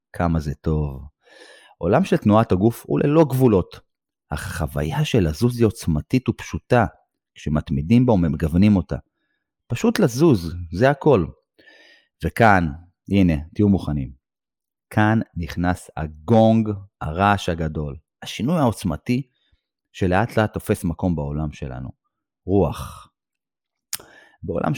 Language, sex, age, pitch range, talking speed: Hebrew, male, 30-49, 80-120 Hz, 110 wpm